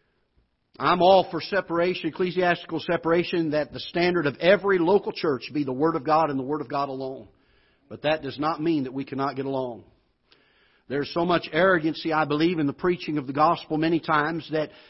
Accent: American